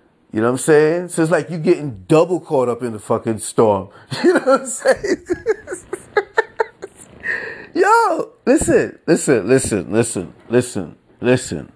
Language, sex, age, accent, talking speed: English, male, 30-49, American, 150 wpm